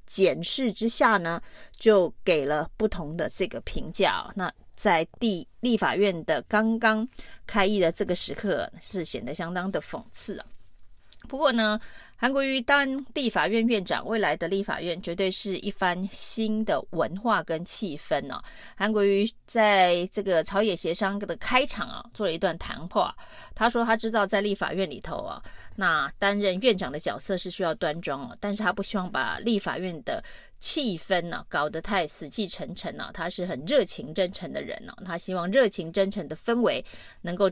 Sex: female